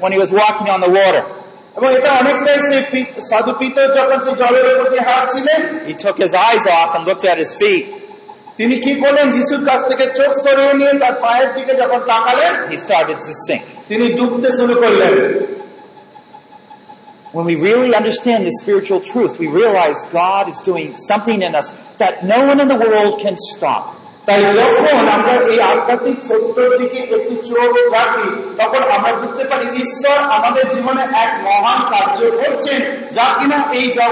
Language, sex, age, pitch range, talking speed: Bengali, male, 40-59, 225-280 Hz, 105 wpm